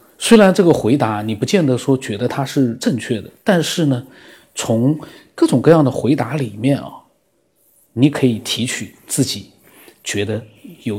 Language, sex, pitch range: Chinese, male, 110-145 Hz